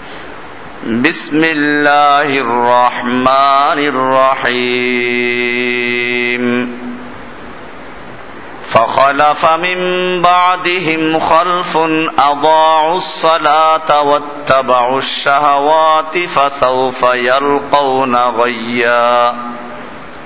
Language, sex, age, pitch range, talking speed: Bengali, male, 50-69, 125-155 Hz, 45 wpm